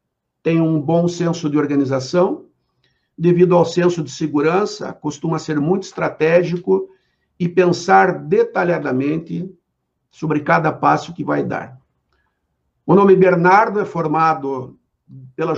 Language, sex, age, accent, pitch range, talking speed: Portuguese, male, 60-79, Brazilian, 150-185 Hz, 115 wpm